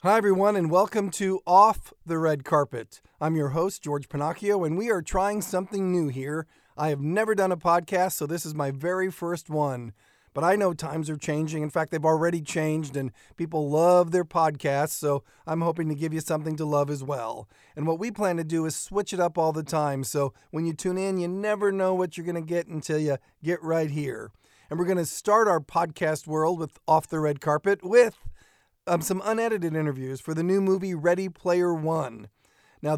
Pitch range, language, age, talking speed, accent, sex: 150-180 Hz, English, 40-59, 215 wpm, American, male